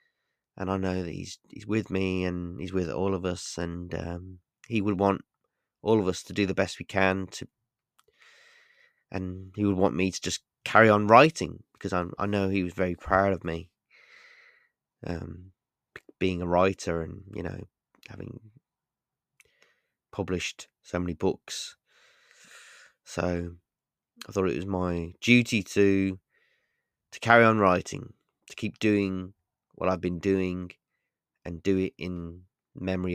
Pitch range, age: 90-110 Hz, 20-39